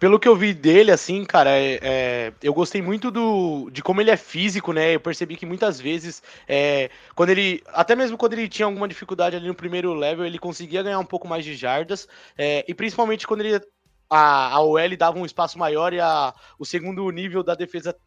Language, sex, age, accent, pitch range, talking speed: Portuguese, male, 20-39, Brazilian, 145-195 Hz, 215 wpm